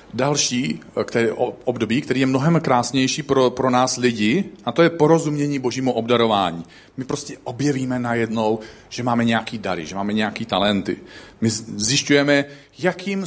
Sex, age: male, 40-59